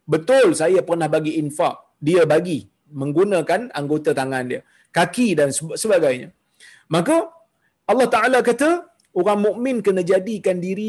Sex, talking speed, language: male, 125 wpm, Malayalam